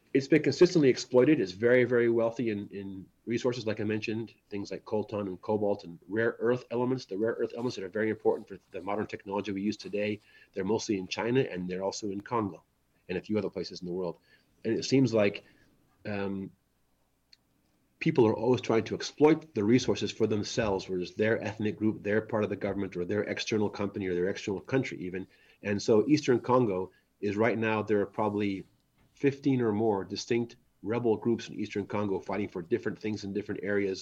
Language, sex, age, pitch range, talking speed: English, male, 30-49, 100-115 Hz, 200 wpm